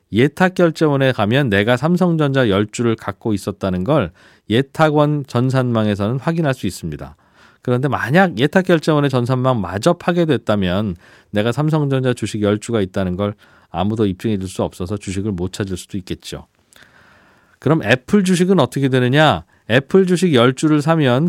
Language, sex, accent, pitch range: Korean, male, native, 110-150 Hz